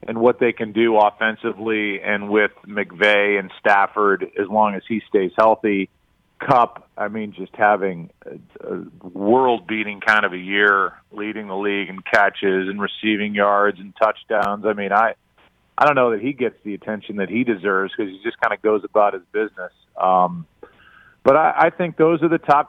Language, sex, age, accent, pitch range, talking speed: English, male, 40-59, American, 100-120 Hz, 185 wpm